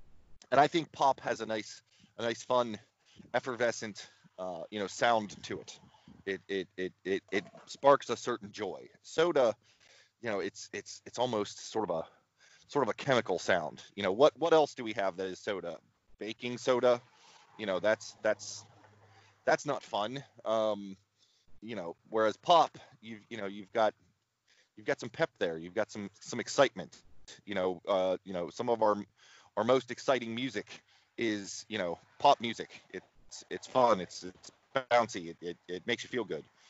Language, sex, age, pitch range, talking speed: English, male, 30-49, 95-125 Hz, 180 wpm